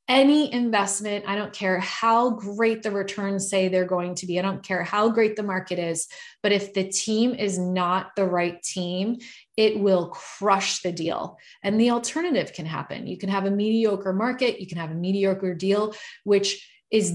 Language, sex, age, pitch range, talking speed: English, female, 20-39, 185-210 Hz, 190 wpm